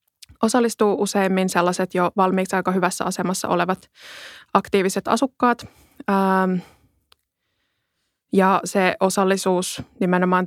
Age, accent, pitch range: 20-39, native, 175-195 Hz